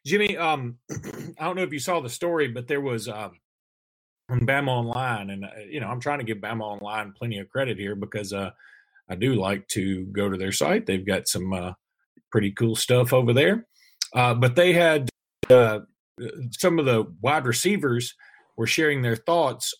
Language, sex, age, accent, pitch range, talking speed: English, male, 40-59, American, 110-135 Hz, 190 wpm